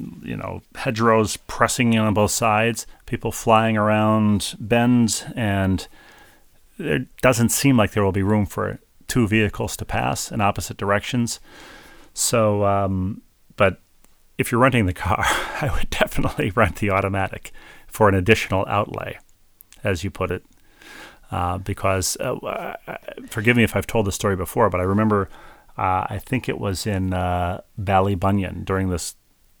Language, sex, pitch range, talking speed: English, male, 95-110 Hz, 155 wpm